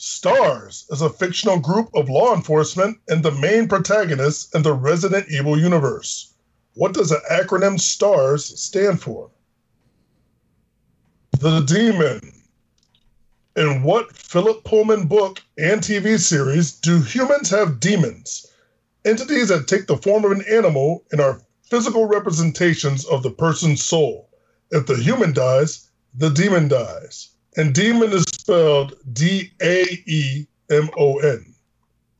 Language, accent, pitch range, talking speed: English, American, 150-205 Hz, 125 wpm